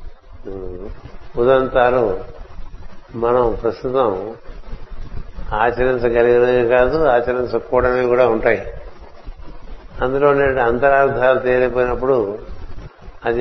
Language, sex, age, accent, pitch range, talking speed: Telugu, male, 60-79, native, 115-130 Hz, 60 wpm